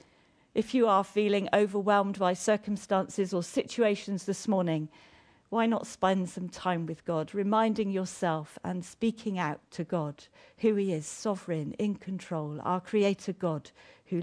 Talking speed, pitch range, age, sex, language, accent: 150 wpm, 170-215 Hz, 50-69, female, English, British